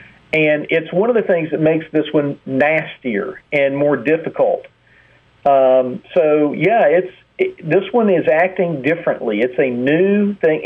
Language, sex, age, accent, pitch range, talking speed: English, male, 50-69, American, 135-185 Hz, 160 wpm